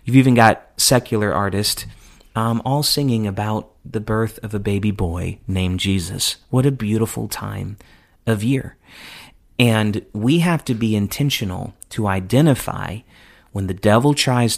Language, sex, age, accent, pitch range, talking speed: English, male, 30-49, American, 100-130 Hz, 145 wpm